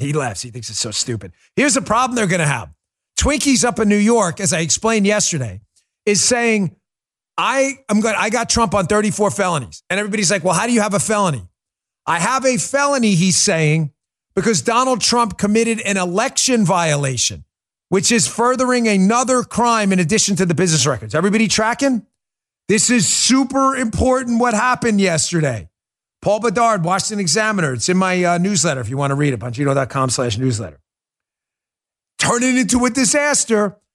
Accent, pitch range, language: American, 145-230 Hz, English